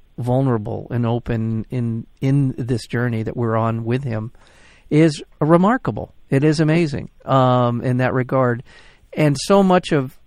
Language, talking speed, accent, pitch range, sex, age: English, 145 wpm, American, 120-150 Hz, male, 50-69